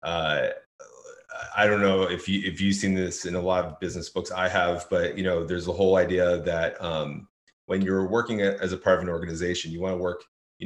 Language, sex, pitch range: English, male, 90-105 Hz